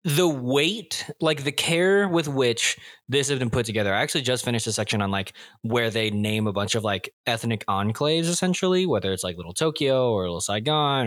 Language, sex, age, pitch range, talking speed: English, male, 20-39, 105-145 Hz, 205 wpm